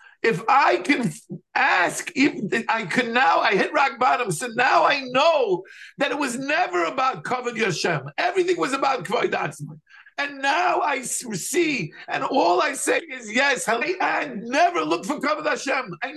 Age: 50-69